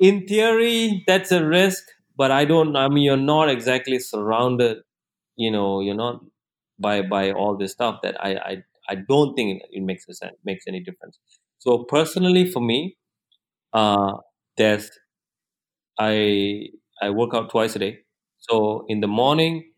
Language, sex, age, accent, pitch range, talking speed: English, male, 30-49, Indian, 105-130 Hz, 160 wpm